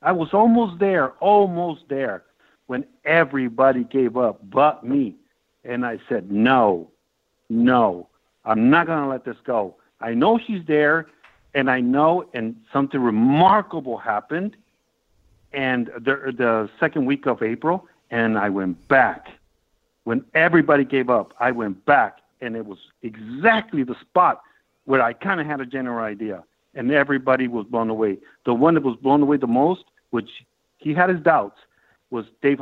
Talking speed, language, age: 160 wpm, English, 60-79